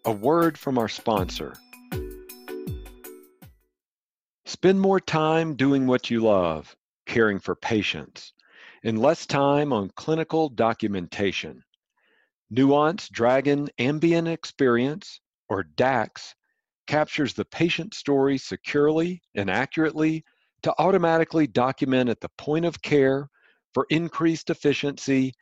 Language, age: English, 50-69